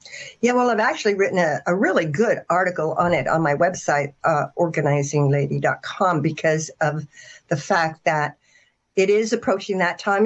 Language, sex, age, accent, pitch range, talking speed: English, female, 60-79, American, 180-235 Hz, 160 wpm